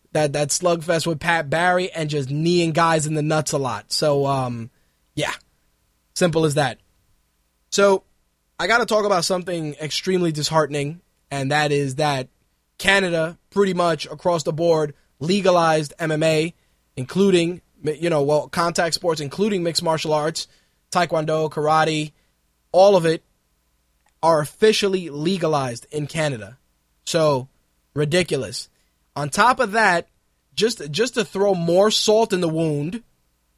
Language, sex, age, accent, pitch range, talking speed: English, male, 20-39, American, 140-195 Hz, 140 wpm